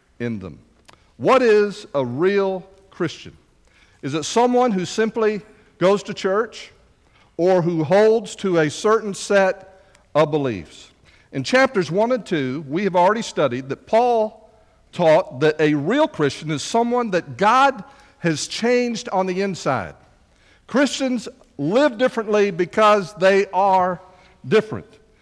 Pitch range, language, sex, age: 150-225 Hz, English, male, 50-69